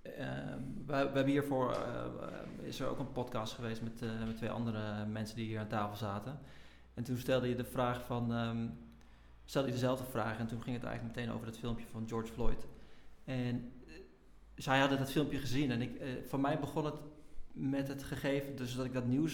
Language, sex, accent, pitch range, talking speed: Dutch, male, Dutch, 120-140 Hz, 210 wpm